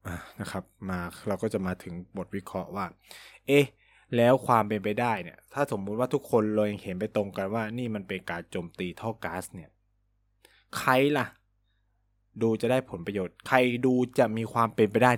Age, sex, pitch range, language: 20-39, male, 100-135 Hz, Thai